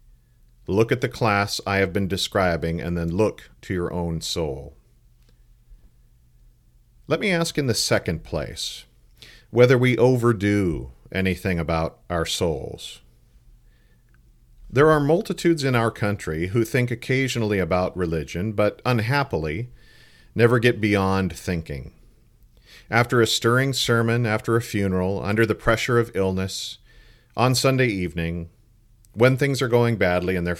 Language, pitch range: English, 95-120 Hz